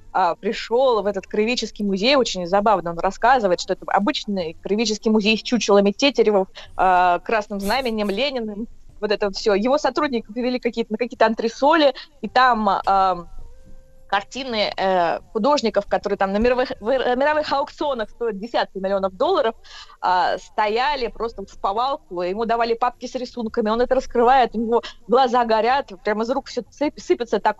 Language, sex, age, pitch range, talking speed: Russian, female, 20-39, 195-255 Hz, 155 wpm